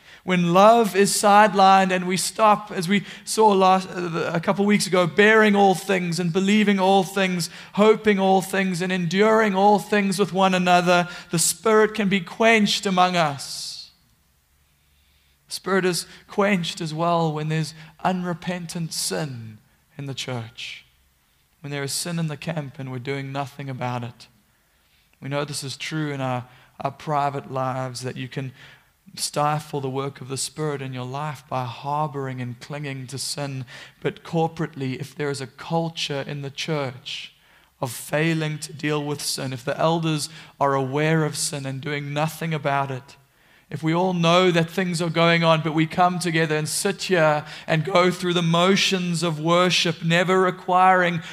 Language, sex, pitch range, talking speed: English, male, 140-185 Hz, 170 wpm